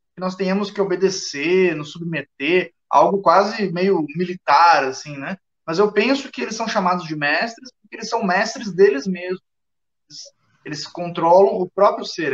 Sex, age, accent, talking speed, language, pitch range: male, 20-39, Brazilian, 160 wpm, Portuguese, 140-190 Hz